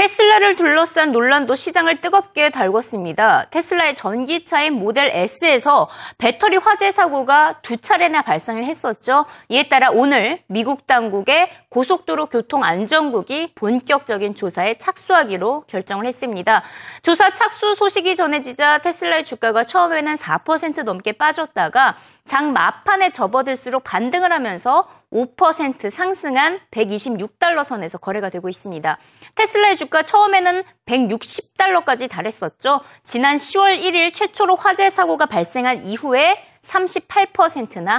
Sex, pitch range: female, 245-365 Hz